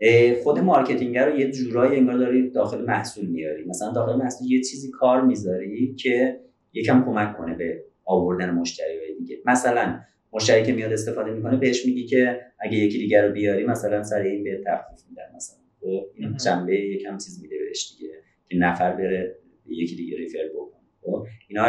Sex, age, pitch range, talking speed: male, 30-49, 95-130 Hz, 170 wpm